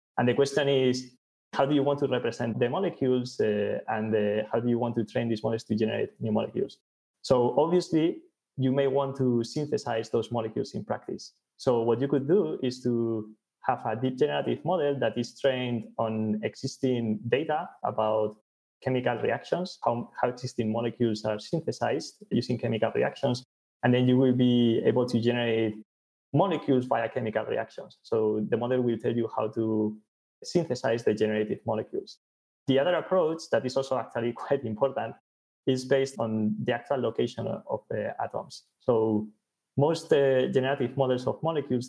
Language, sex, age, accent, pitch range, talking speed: English, male, 20-39, Spanish, 110-135 Hz, 170 wpm